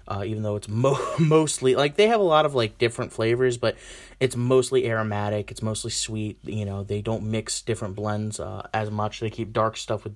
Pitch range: 105-130 Hz